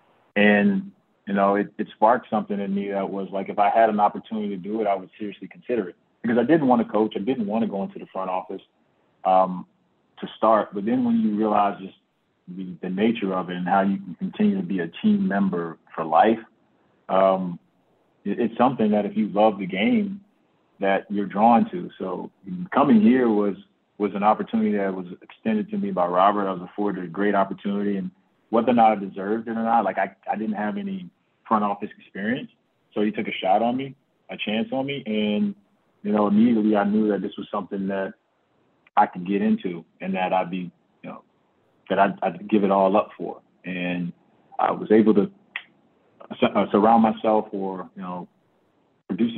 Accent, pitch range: American, 95-130 Hz